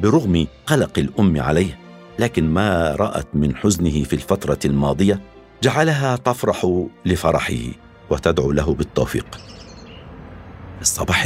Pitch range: 85-110 Hz